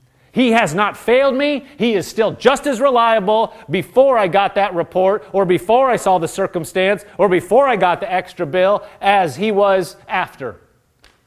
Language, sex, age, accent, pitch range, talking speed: English, male, 30-49, American, 160-210 Hz, 175 wpm